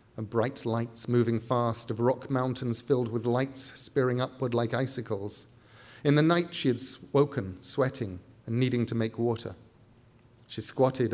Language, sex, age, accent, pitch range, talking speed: English, male, 40-59, British, 115-130 Hz, 155 wpm